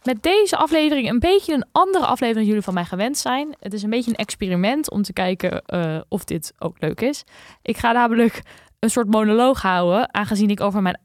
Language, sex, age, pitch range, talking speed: Dutch, female, 20-39, 180-240 Hz, 215 wpm